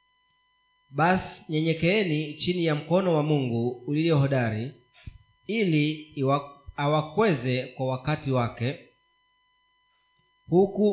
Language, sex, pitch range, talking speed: Swahili, male, 130-185 Hz, 80 wpm